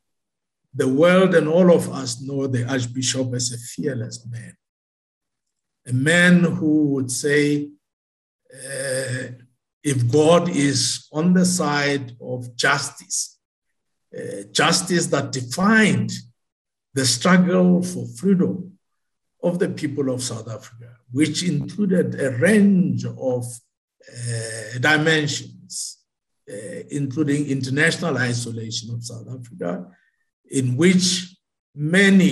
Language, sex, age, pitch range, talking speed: English, male, 60-79, 120-155 Hz, 110 wpm